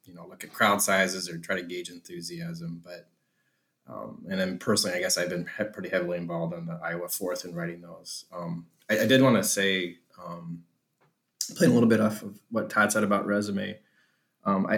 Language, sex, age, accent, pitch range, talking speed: English, male, 20-39, American, 100-115 Hz, 205 wpm